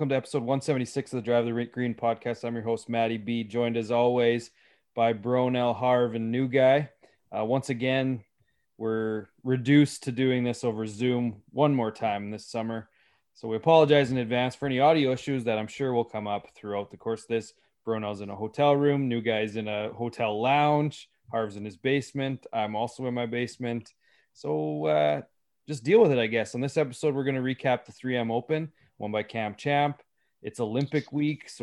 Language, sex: English, male